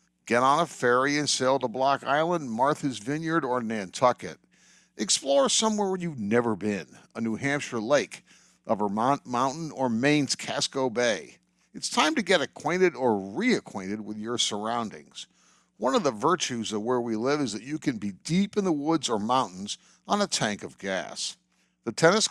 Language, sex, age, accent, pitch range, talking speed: English, male, 60-79, American, 115-155 Hz, 180 wpm